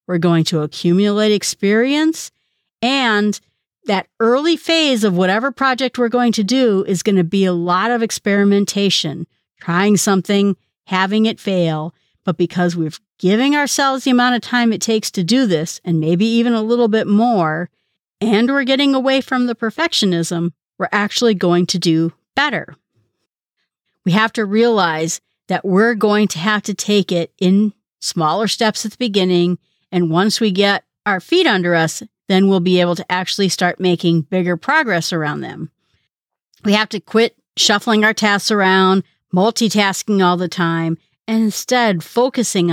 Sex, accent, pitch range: female, American, 175-225 Hz